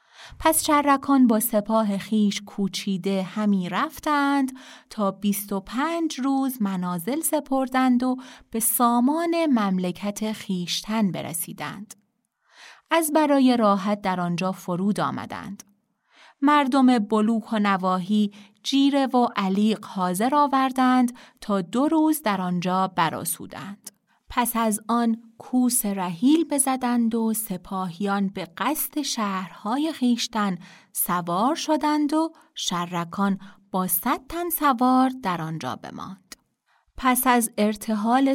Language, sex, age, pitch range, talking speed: Persian, female, 30-49, 195-270 Hz, 105 wpm